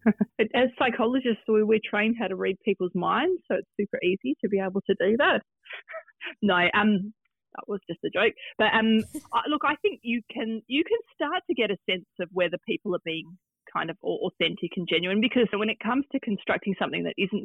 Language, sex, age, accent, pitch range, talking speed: English, female, 30-49, Australian, 180-230 Hz, 205 wpm